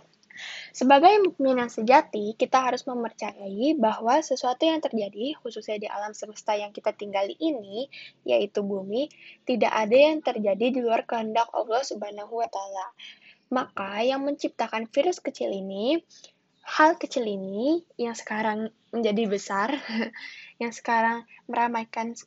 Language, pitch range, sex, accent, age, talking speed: Indonesian, 210-260 Hz, female, native, 10-29, 125 wpm